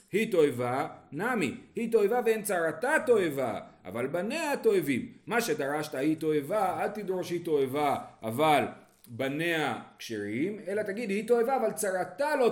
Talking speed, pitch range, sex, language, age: 140 wpm, 125-205 Hz, male, Hebrew, 40-59